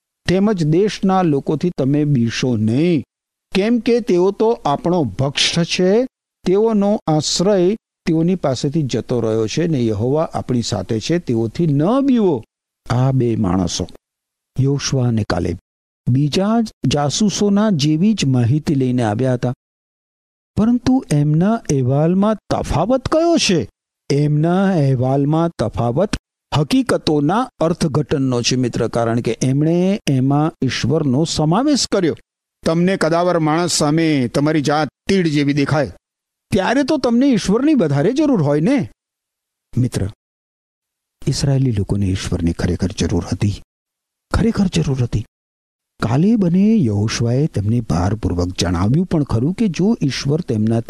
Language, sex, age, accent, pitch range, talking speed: Gujarati, male, 50-69, native, 120-190 Hz, 95 wpm